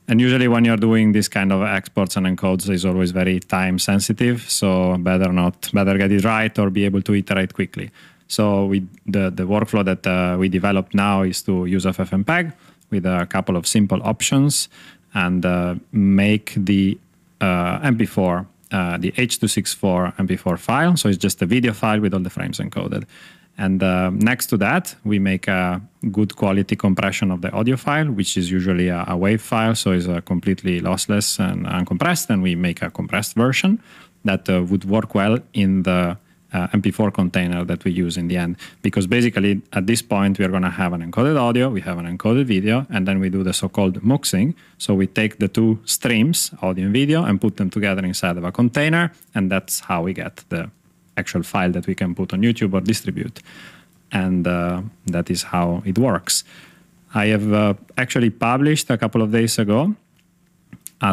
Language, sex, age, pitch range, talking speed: English, male, 30-49, 95-115 Hz, 195 wpm